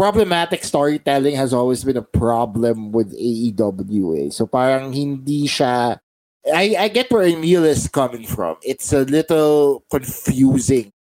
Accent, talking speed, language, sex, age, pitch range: Filipino, 140 wpm, English, male, 20-39, 115-150 Hz